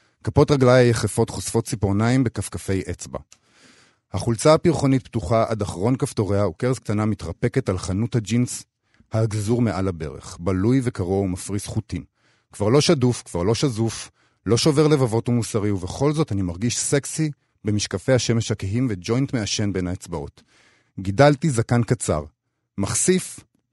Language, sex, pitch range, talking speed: Hebrew, male, 100-135 Hz, 130 wpm